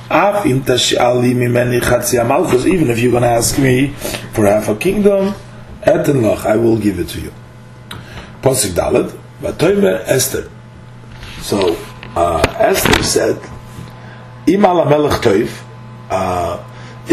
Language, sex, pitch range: English, male, 115-150 Hz